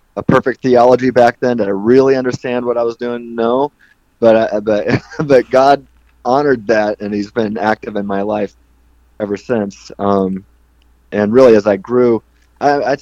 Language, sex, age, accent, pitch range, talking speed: English, male, 30-49, American, 95-115 Hz, 165 wpm